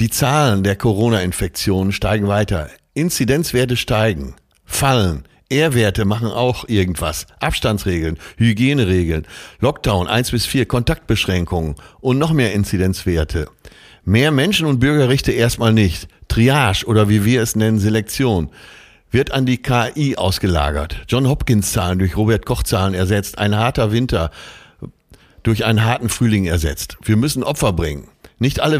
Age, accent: 50-69, German